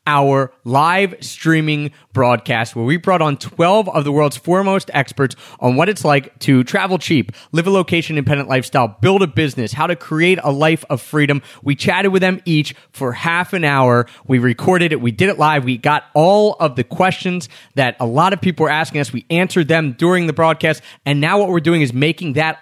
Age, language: 30-49, English